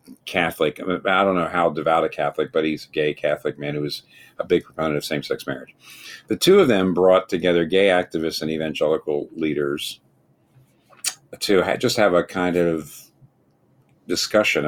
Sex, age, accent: male, 50-69, American